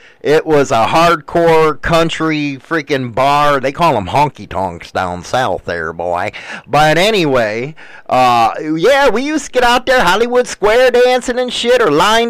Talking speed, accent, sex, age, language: 155 wpm, American, male, 30-49, English